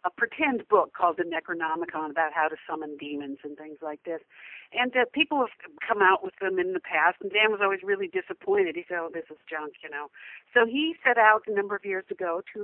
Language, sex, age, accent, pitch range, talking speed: English, female, 60-79, American, 185-305 Hz, 235 wpm